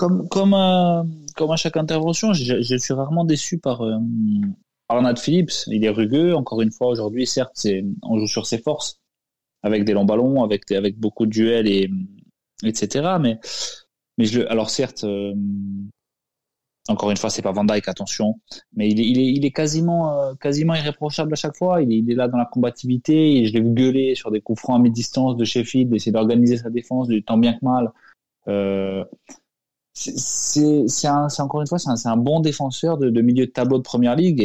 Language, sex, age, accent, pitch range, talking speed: French, male, 20-39, French, 105-140 Hz, 210 wpm